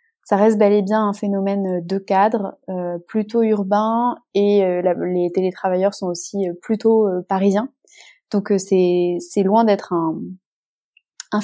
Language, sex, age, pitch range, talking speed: French, female, 20-39, 190-220 Hz, 165 wpm